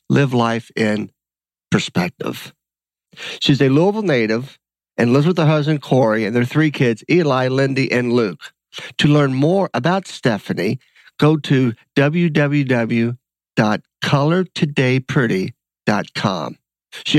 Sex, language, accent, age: male, English, American, 50-69